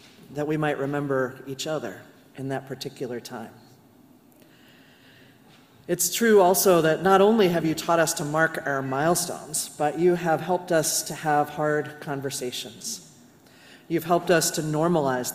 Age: 40-59